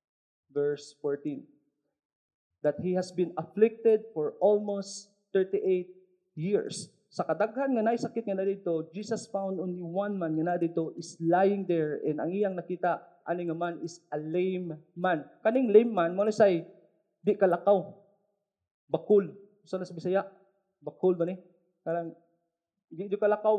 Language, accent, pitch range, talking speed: English, Filipino, 175-225 Hz, 150 wpm